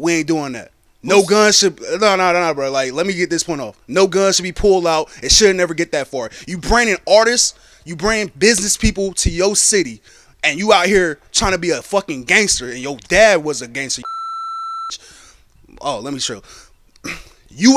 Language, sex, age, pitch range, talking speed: English, male, 20-39, 155-220 Hz, 205 wpm